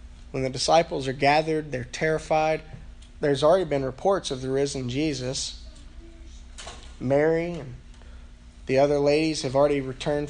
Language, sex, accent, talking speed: English, male, American, 135 wpm